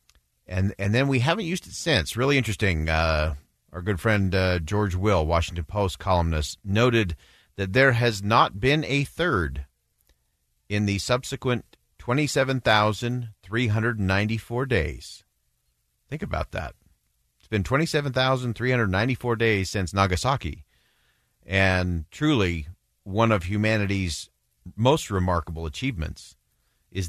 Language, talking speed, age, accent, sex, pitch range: English, 115 wpm, 50-69, American, male, 80-110 Hz